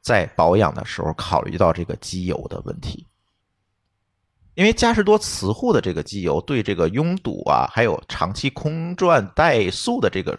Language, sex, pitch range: Chinese, male, 100-160 Hz